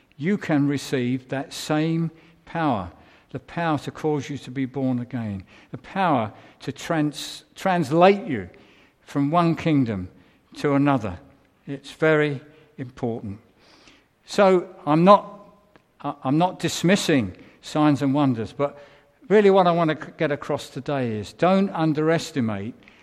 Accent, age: British, 60-79